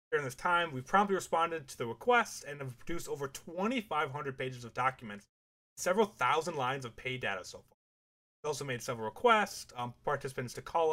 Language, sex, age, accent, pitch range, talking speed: English, male, 20-39, American, 125-175 Hz, 190 wpm